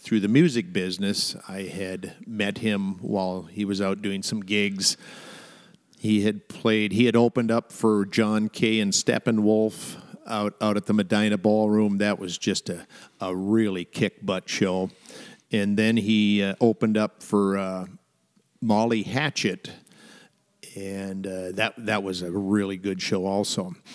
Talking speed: 155 wpm